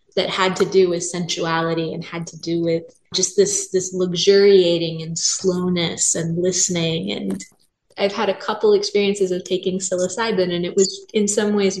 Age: 20-39